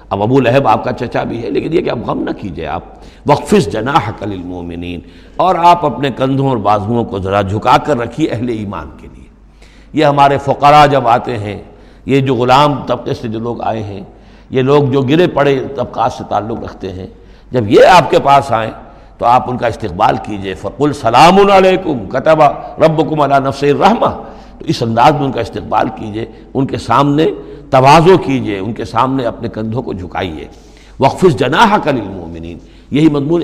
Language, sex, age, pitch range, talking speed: Urdu, male, 60-79, 105-145 Hz, 185 wpm